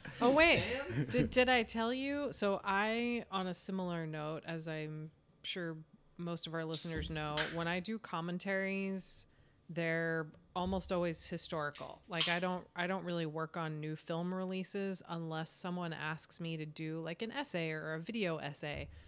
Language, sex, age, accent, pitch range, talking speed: English, female, 30-49, American, 160-185 Hz, 165 wpm